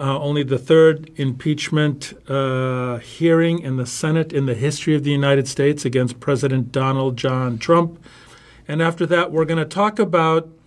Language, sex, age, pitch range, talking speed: English, male, 50-69, 140-170 Hz, 170 wpm